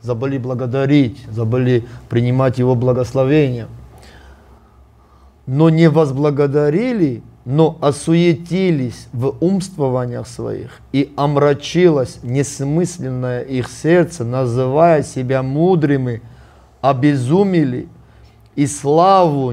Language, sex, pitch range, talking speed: Russian, male, 125-160 Hz, 75 wpm